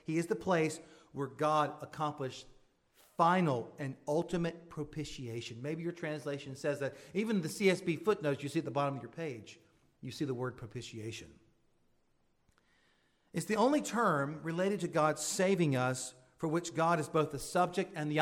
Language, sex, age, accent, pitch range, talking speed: English, male, 40-59, American, 145-170 Hz, 170 wpm